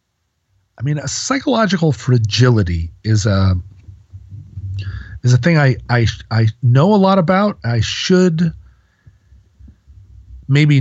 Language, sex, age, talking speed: English, male, 40-59, 110 wpm